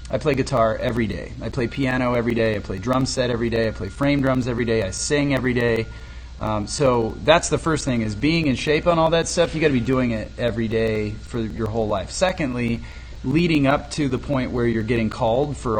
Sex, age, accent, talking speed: male, 30-49, American, 235 wpm